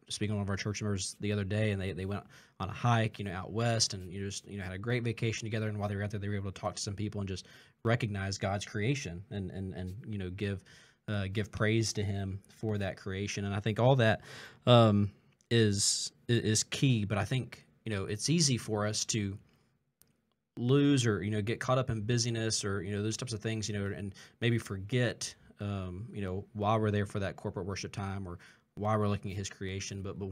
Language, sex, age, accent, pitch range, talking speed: English, male, 20-39, American, 100-115 Hz, 245 wpm